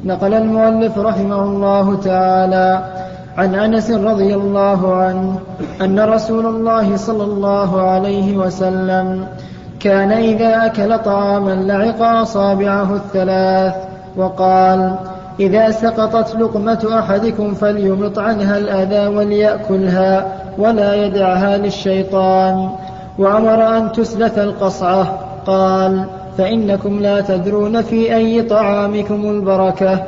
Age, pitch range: 20-39, 190-220 Hz